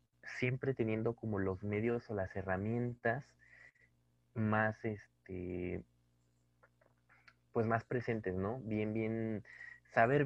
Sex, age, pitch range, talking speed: male, 30-49, 90-115 Hz, 100 wpm